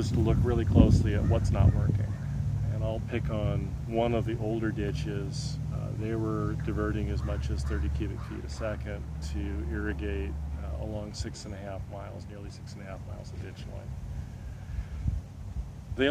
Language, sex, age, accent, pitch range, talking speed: English, male, 40-59, American, 100-120 Hz, 180 wpm